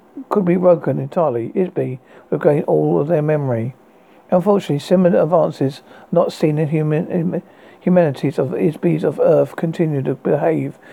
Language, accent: English, British